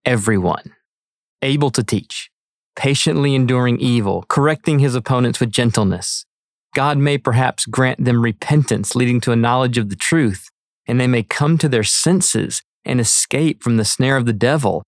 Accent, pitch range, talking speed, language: American, 115-145 Hz, 160 wpm, English